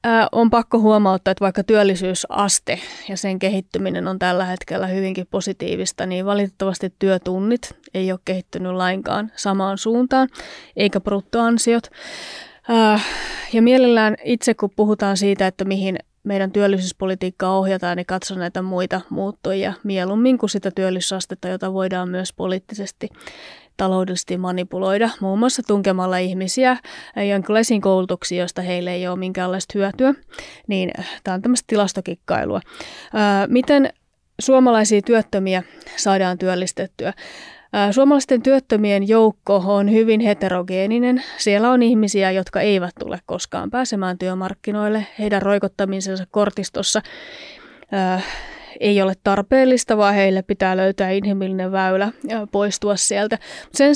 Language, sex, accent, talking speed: Finnish, female, native, 120 wpm